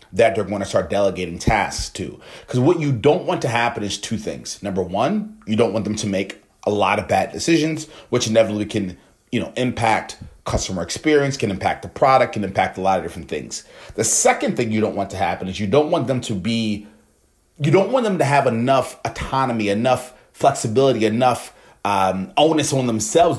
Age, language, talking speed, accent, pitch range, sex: 30-49, English, 205 wpm, American, 100-140 Hz, male